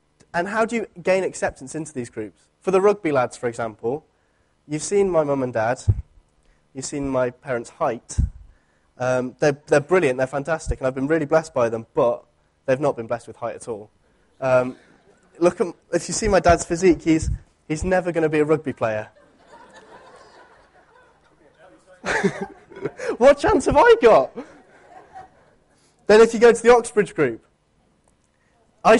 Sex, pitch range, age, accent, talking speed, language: male, 130-195 Hz, 20-39, British, 165 wpm, English